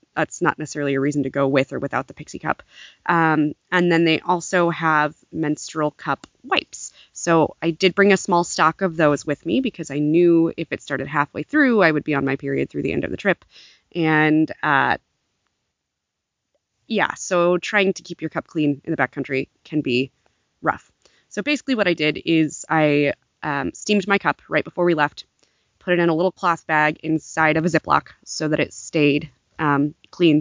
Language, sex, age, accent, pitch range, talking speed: English, female, 20-39, American, 150-180 Hz, 200 wpm